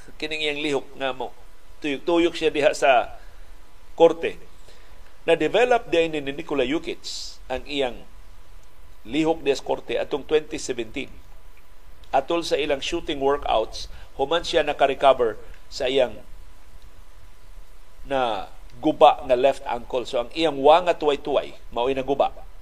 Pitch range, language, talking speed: 130-175 Hz, Filipino, 125 wpm